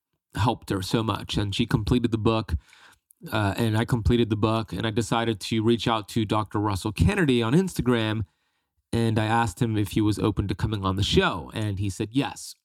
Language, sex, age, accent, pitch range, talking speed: English, male, 30-49, American, 110-130 Hz, 210 wpm